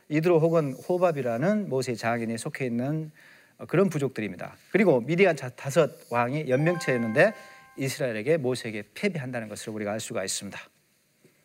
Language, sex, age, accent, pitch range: Korean, male, 40-59, native, 130-205 Hz